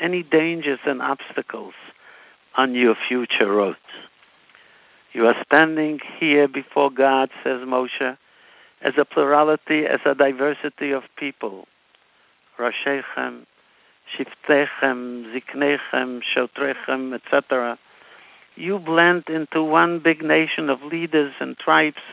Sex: male